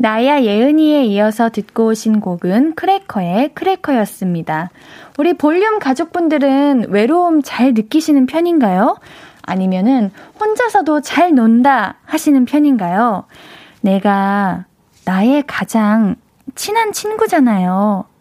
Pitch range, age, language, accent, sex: 210-310 Hz, 10-29, Korean, native, female